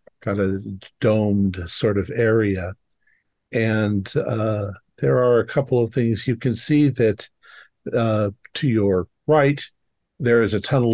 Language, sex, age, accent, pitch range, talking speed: English, male, 50-69, American, 100-125 Hz, 145 wpm